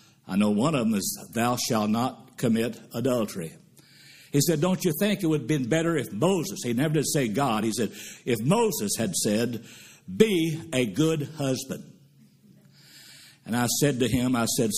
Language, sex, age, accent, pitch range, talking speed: English, male, 60-79, American, 130-160 Hz, 185 wpm